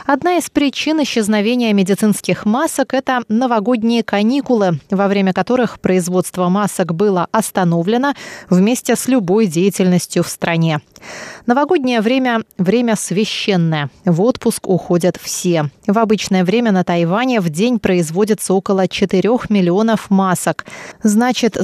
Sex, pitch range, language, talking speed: female, 185-245 Hz, Russian, 125 wpm